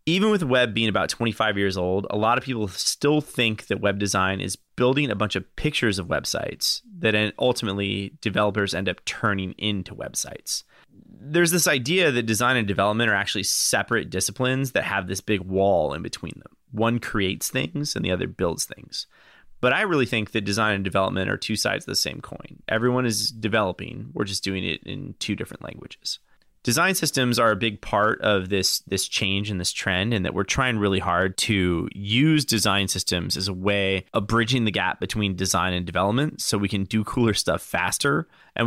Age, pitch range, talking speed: 30-49, 95-115 Hz, 200 wpm